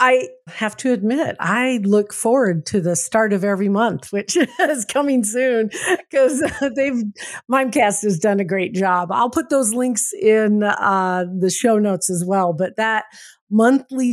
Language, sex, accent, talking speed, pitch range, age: English, female, American, 165 wpm, 190-240 Hz, 50-69